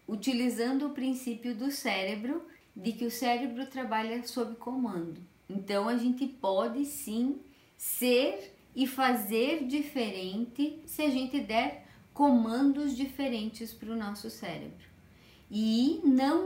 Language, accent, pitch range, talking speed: Portuguese, Brazilian, 220-270 Hz, 120 wpm